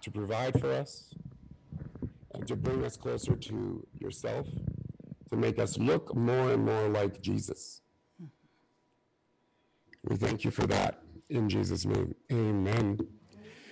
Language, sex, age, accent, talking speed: English, male, 50-69, American, 125 wpm